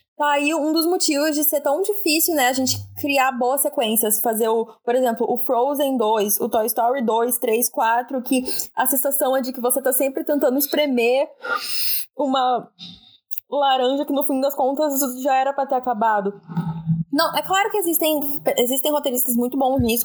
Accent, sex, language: Brazilian, female, Portuguese